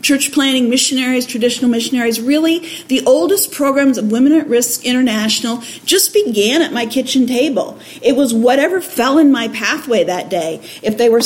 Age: 50-69